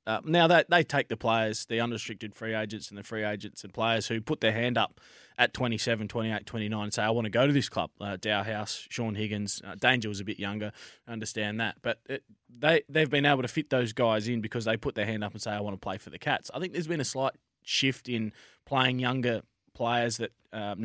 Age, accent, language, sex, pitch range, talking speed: 20-39, Australian, English, male, 110-130 Hz, 255 wpm